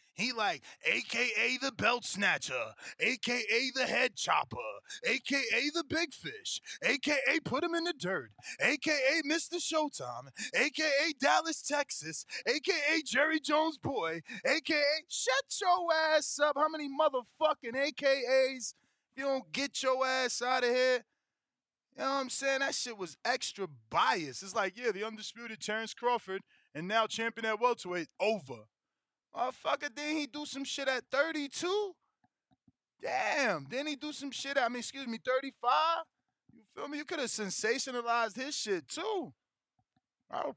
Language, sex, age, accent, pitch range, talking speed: English, male, 20-39, American, 205-295 Hz, 150 wpm